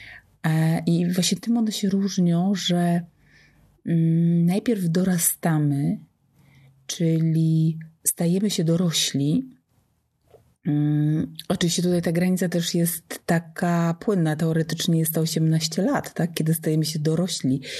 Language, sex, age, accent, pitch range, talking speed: Polish, female, 30-49, native, 155-185 Hz, 105 wpm